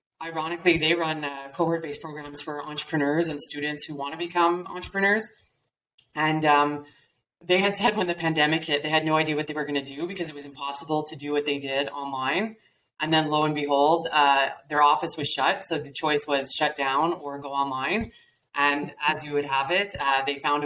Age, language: 20-39, English